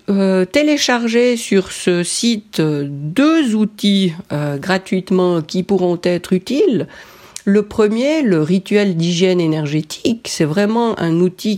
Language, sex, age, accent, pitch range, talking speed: French, female, 50-69, French, 160-210 Hz, 120 wpm